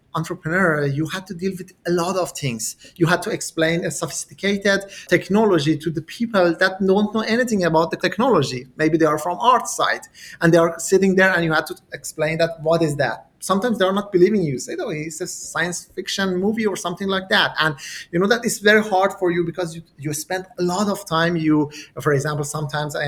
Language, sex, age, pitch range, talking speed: English, male, 30-49, 150-185 Hz, 225 wpm